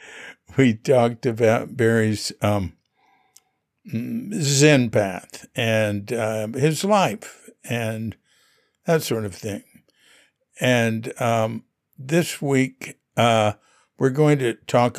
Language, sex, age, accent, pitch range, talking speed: English, male, 60-79, American, 110-150 Hz, 100 wpm